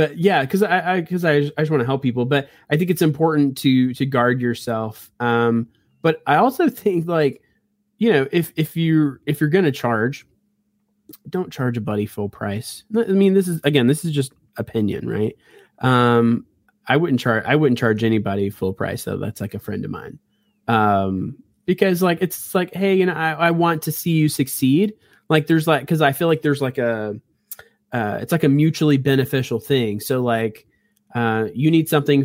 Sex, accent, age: male, American, 20-39